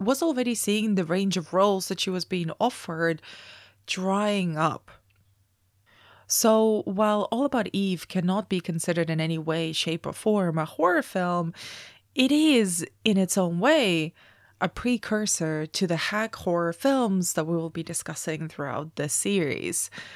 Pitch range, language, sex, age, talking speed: 155-185 Hz, English, female, 20-39, 155 wpm